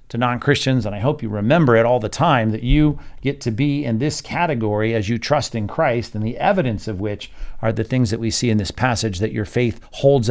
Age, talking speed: 50-69, 245 wpm